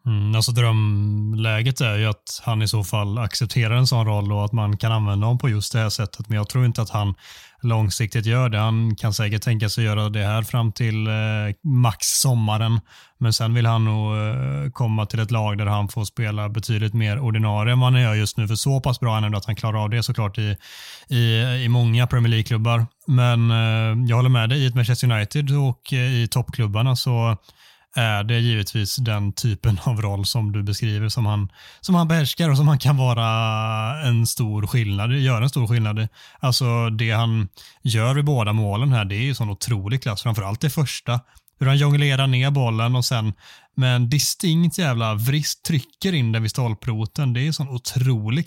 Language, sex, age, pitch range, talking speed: Swedish, male, 30-49, 110-125 Hz, 195 wpm